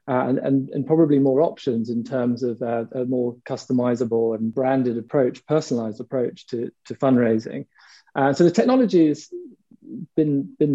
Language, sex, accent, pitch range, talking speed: English, male, British, 120-140 Hz, 165 wpm